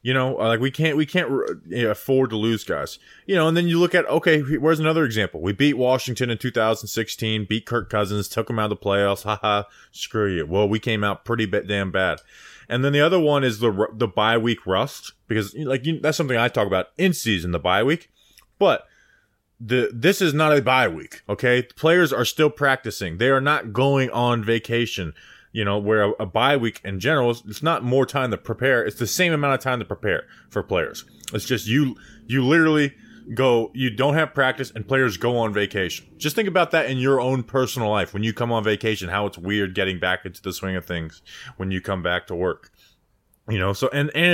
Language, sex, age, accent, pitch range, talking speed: English, male, 20-39, American, 105-135 Hz, 225 wpm